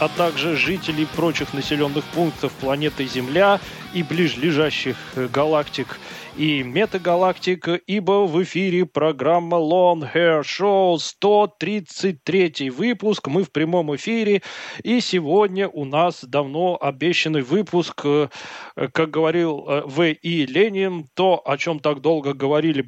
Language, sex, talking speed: Russian, male, 115 wpm